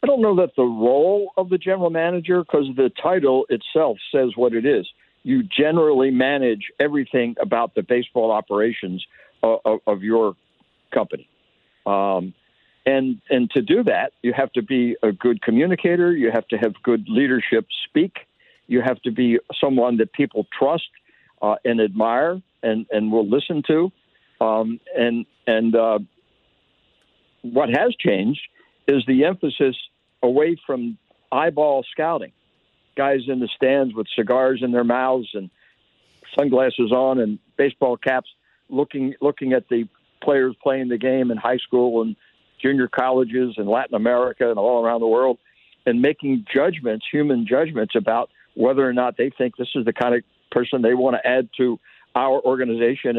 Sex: male